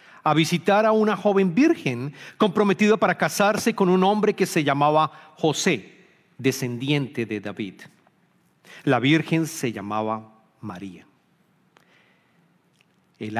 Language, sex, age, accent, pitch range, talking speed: English, male, 40-59, Mexican, 130-185 Hz, 110 wpm